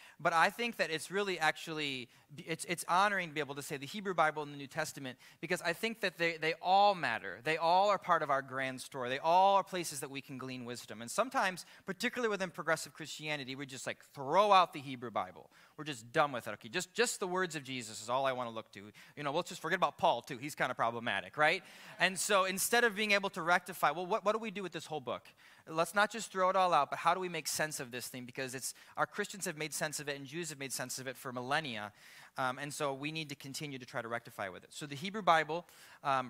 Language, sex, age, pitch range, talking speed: English, male, 30-49, 135-180 Hz, 270 wpm